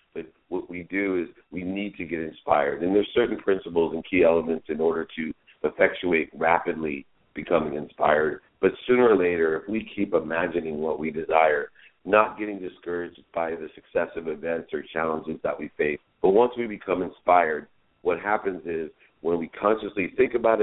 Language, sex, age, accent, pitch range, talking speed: English, male, 50-69, American, 80-100 Hz, 175 wpm